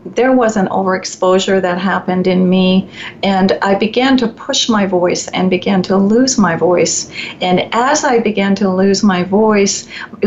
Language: English